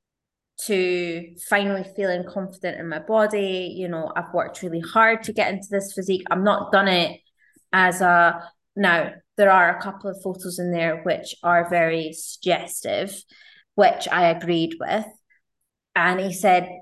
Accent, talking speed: British, 155 wpm